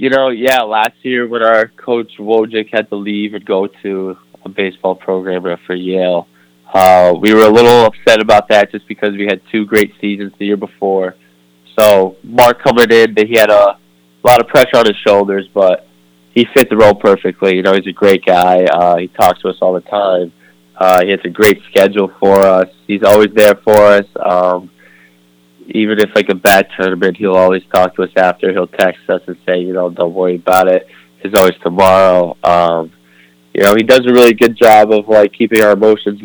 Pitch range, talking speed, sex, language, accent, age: 90-105 Hz, 205 wpm, male, English, American, 20-39